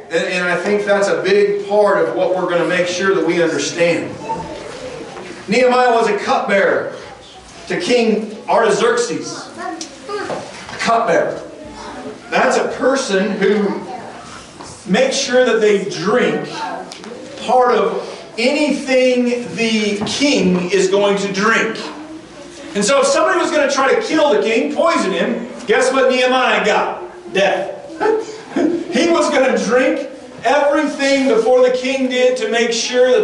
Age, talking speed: 40-59, 135 wpm